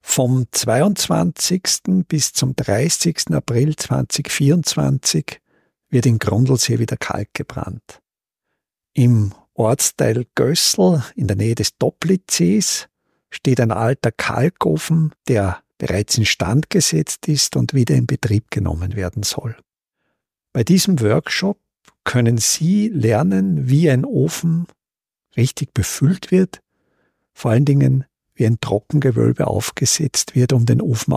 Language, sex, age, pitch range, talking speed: German, male, 50-69, 115-165 Hz, 115 wpm